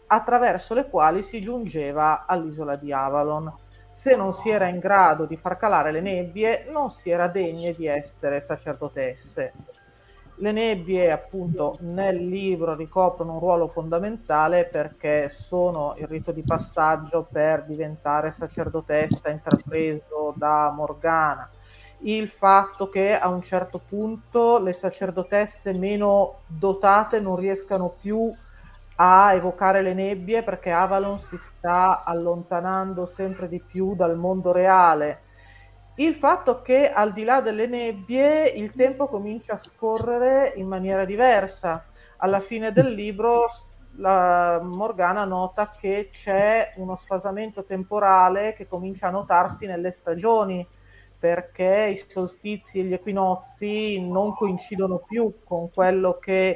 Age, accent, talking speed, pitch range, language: 40-59, native, 130 wpm, 165-205 Hz, Italian